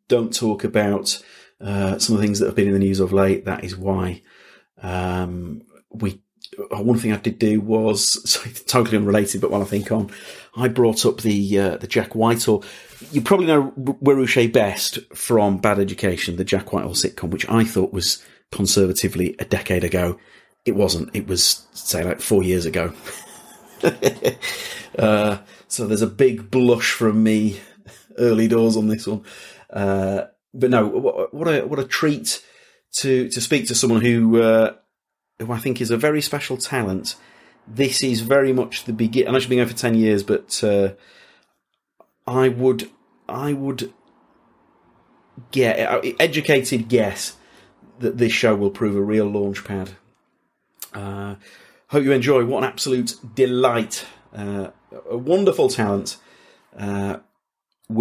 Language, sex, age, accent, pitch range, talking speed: English, male, 40-59, British, 100-125 Hz, 160 wpm